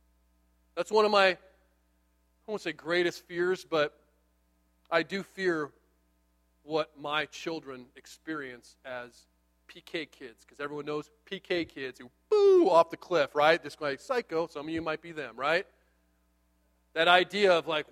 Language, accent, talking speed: English, American, 150 wpm